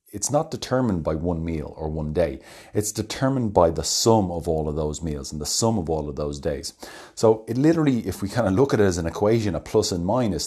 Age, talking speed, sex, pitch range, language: 30-49, 250 wpm, male, 80-110 Hz, English